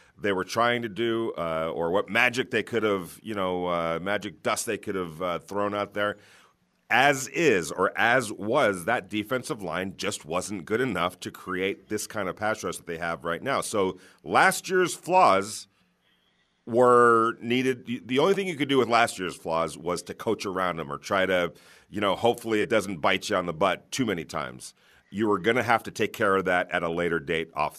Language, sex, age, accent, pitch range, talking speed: English, male, 40-59, American, 90-115 Hz, 215 wpm